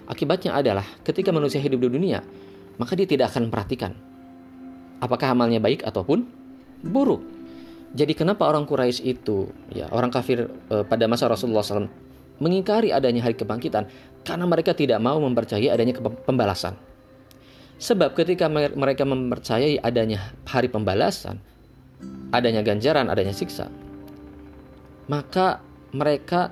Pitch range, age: 100-140 Hz, 30-49